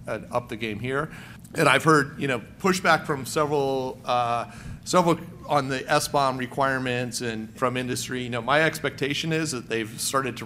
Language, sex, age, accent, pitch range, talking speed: English, male, 40-59, American, 125-155 Hz, 180 wpm